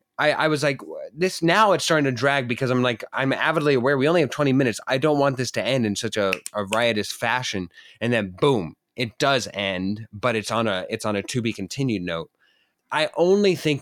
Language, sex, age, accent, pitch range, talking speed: English, male, 20-39, American, 110-145 Hz, 230 wpm